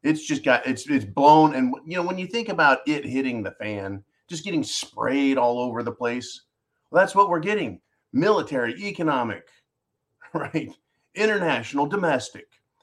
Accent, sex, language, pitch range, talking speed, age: American, male, English, 135-195 Hz, 160 wpm, 40-59